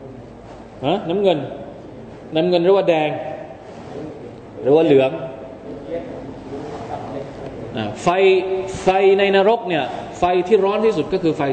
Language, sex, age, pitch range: Thai, male, 20-39, 130-175 Hz